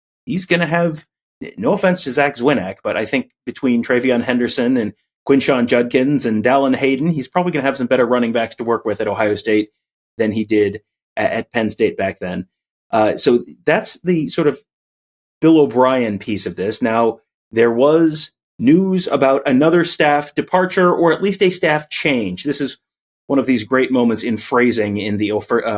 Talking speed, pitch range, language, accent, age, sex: 190 wpm, 110-150 Hz, English, American, 30-49, male